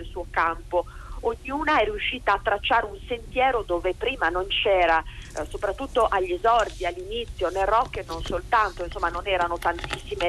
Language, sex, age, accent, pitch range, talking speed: Italian, female, 40-59, native, 185-245 Hz, 160 wpm